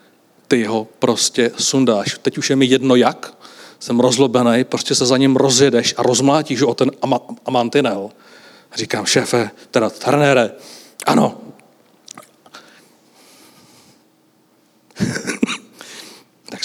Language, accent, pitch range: Czech, native, 125-155 Hz